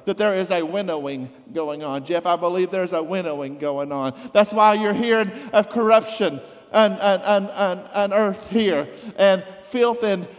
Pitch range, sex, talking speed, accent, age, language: 185-230 Hz, male, 160 wpm, American, 50-69, English